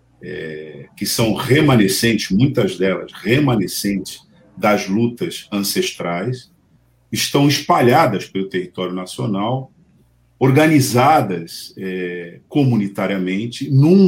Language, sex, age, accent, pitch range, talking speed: Portuguese, male, 50-69, Brazilian, 95-125 Hz, 80 wpm